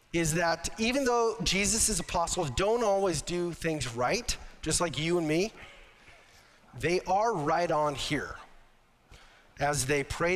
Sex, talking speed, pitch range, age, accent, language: male, 140 wpm, 130-170 Hz, 40-59, American, English